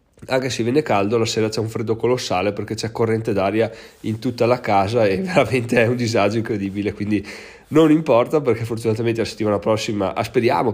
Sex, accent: male, native